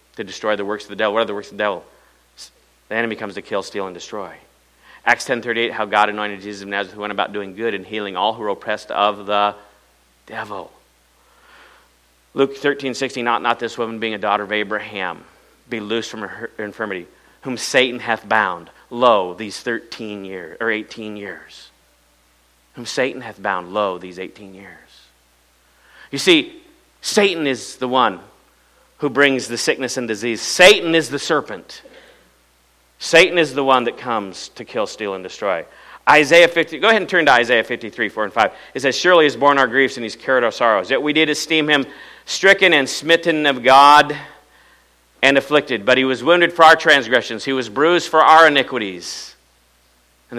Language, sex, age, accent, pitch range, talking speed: English, male, 40-59, American, 100-140 Hz, 190 wpm